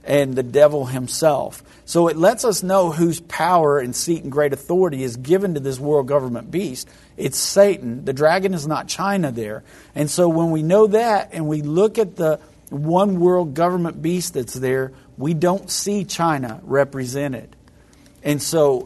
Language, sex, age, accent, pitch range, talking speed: English, male, 50-69, American, 140-170 Hz, 175 wpm